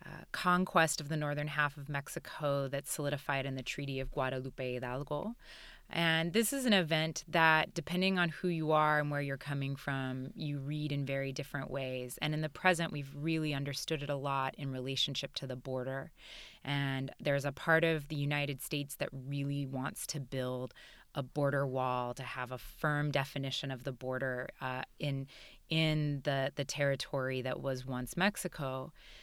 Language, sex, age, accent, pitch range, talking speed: English, female, 20-39, American, 135-165 Hz, 180 wpm